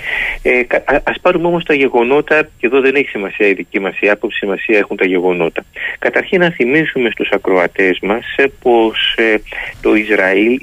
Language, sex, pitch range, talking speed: Greek, male, 110-145 Hz, 165 wpm